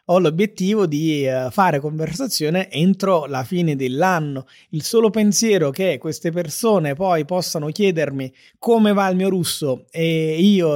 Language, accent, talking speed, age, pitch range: Italian, native, 140 wpm, 30-49, 155-190 Hz